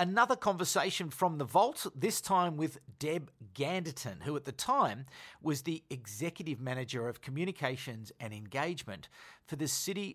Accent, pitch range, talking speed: Australian, 120-165 Hz, 150 wpm